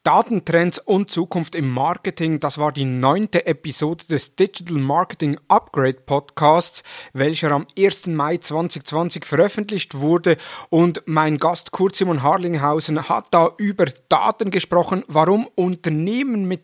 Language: German